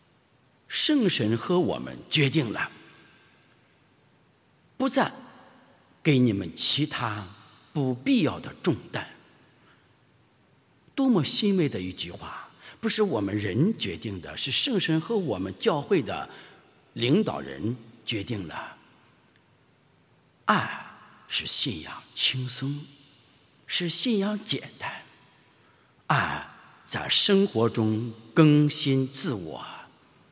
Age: 50-69